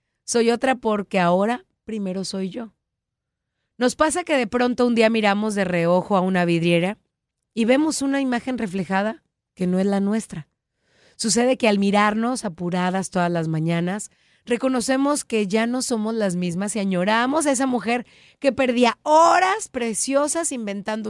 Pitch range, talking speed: 185-245 Hz, 155 wpm